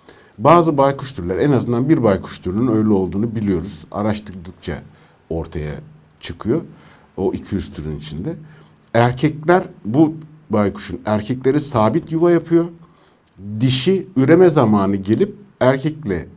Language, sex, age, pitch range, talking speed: Turkish, male, 60-79, 100-145 Hz, 110 wpm